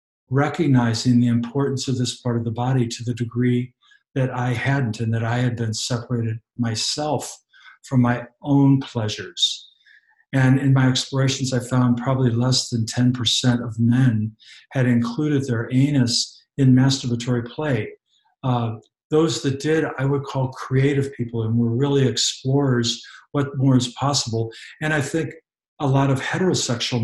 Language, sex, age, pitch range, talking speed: English, male, 50-69, 120-140 Hz, 155 wpm